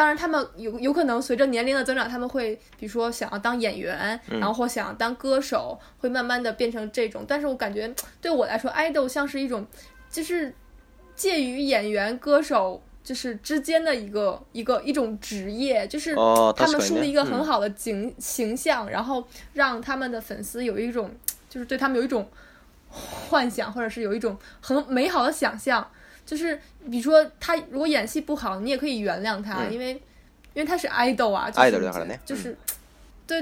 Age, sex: 20-39, female